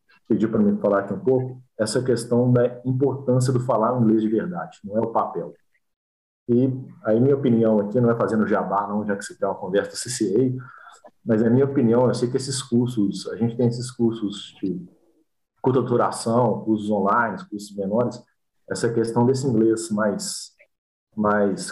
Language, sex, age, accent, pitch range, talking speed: English, male, 40-59, Brazilian, 105-125 Hz, 175 wpm